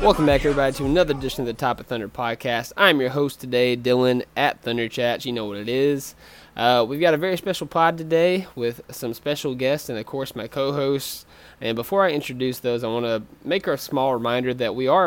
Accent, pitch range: American, 120-150 Hz